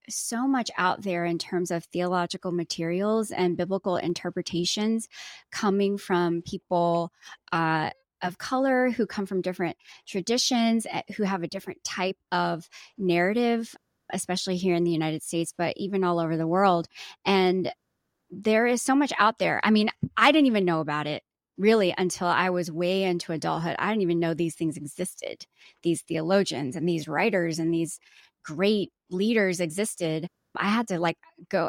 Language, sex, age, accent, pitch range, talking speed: English, female, 20-39, American, 170-215 Hz, 165 wpm